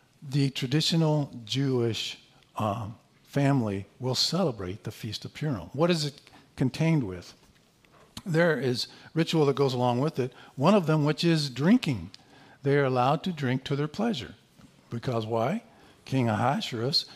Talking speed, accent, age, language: 145 wpm, American, 50-69, English